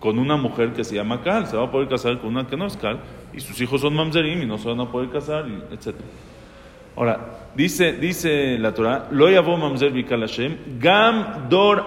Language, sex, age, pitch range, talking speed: English, male, 40-59, 125-175 Hz, 210 wpm